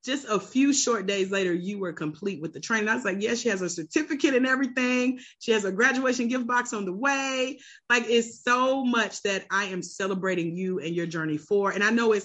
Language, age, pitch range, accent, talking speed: English, 30-49, 185-240 Hz, American, 235 wpm